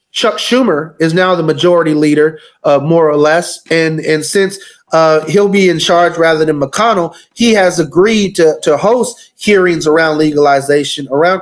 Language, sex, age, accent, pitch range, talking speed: English, male, 30-49, American, 155-195 Hz, 170 wpm